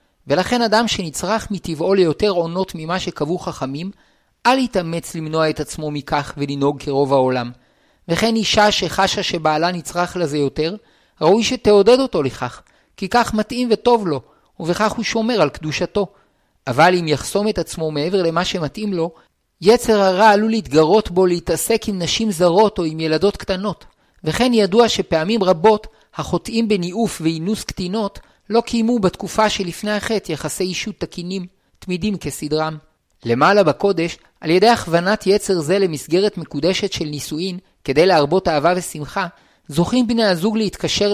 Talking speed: 145 wpm